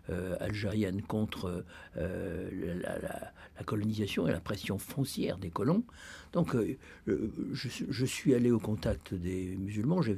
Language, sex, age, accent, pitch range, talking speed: French, male, 60-79, French, 90-110 Hz, 145 wpm